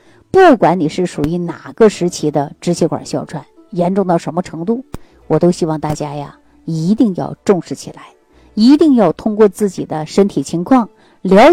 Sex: female